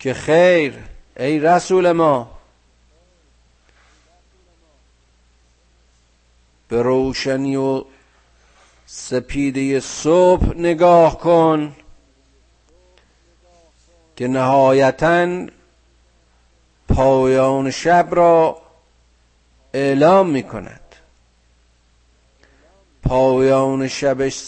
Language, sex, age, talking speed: Persian, male, 50-69, 55 wpm